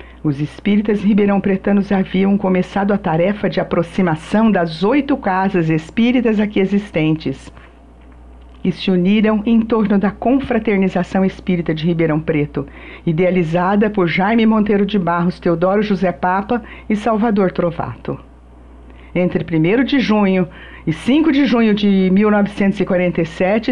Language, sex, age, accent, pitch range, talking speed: Portuguese, female, 50-69, Brazilian, 165-210 Hz, 125 wpm